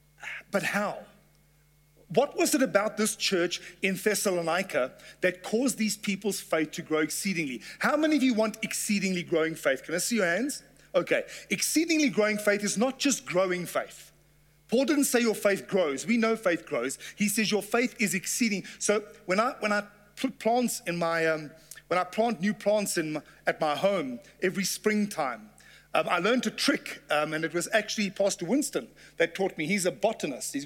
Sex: male